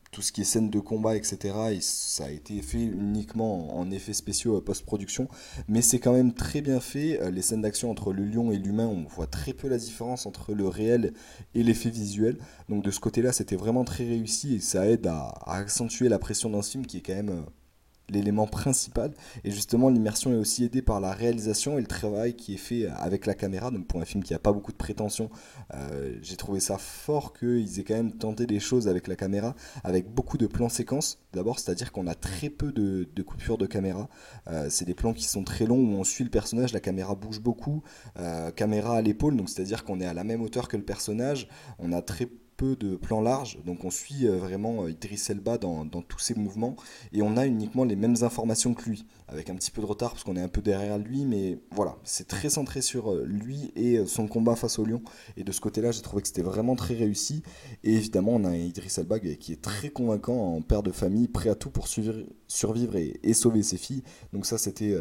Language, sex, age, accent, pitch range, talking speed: French, male, 20-39, French, 95-120 Hz, 230 wpm